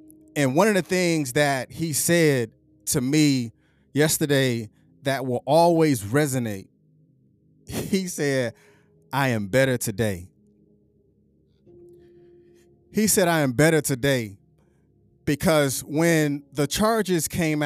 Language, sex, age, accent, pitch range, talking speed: English, male, 20-39, American, 125-165 Hz, 110 wpm